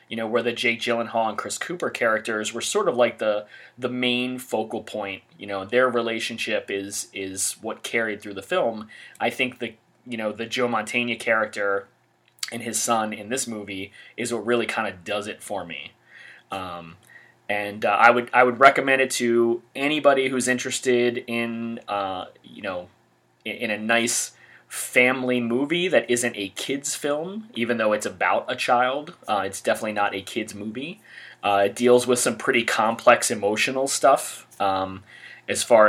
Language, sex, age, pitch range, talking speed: English, male, 30-49, 105-125 Hz, 180 wpm